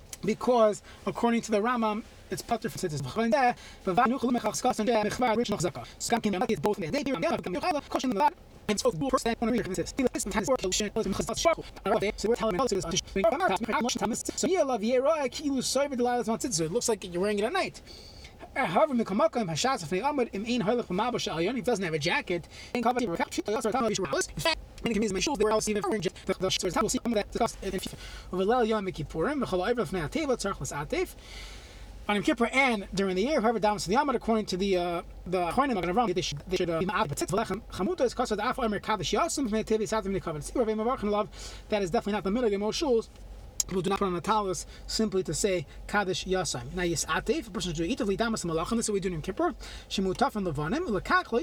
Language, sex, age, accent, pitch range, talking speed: English, male, 30-49, American, 190-240 Hz, 100 wpm